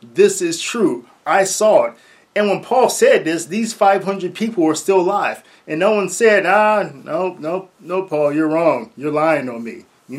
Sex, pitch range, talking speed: male, 135-185 Hz, 195 wpm